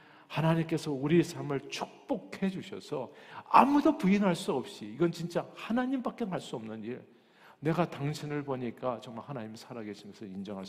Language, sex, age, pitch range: Korean, male, 50-69, 125-185 Hz